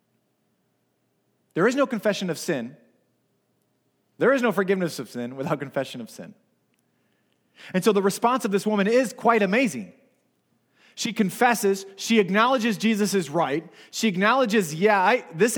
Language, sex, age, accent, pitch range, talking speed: English, male, 30-49, American, 170-235 Hz, 145 wpm